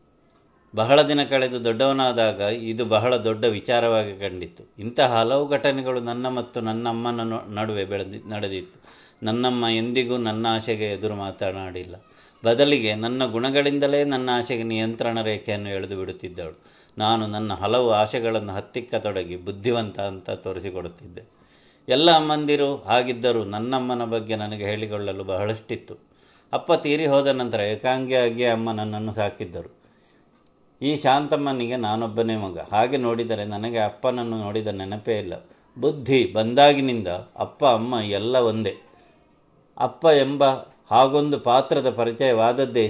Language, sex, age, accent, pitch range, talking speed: Kannada, male, 30-49, native, 105-125 Hz, 110 wpm